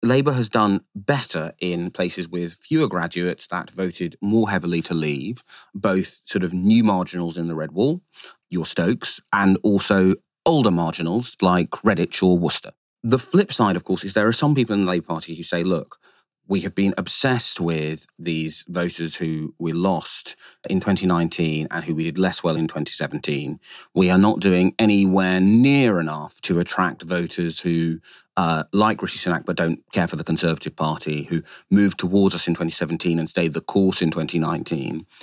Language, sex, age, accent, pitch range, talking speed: English, male, 30-49, British, 80-100 Hz, 180 wpm